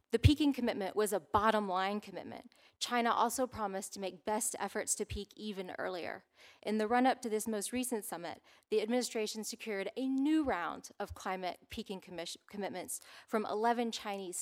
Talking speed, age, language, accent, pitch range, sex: 165 wpm, 30-49, English, American, 190-230 Hz, female